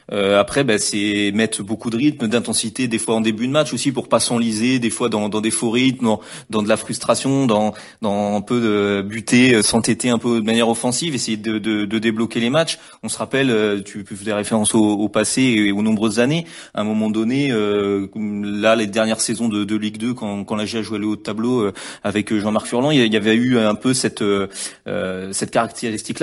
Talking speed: 235 wpm